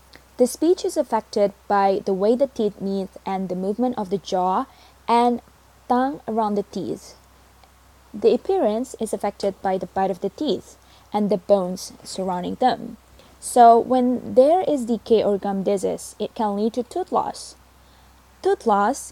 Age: 20-39